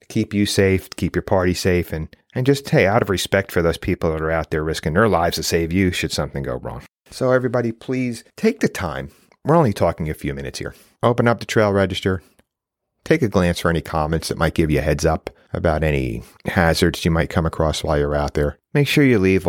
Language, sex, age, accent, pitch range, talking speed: English, male, 40-59, American, 85-110 Hz, 240 wpm